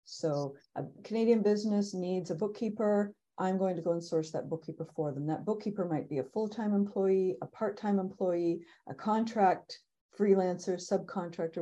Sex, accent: female, American